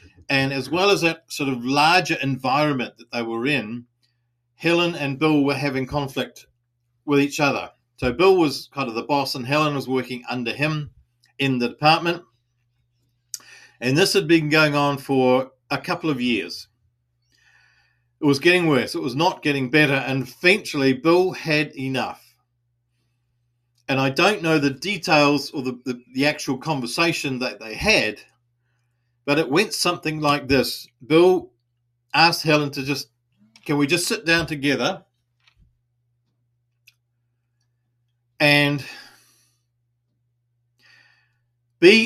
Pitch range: 120-150 Hz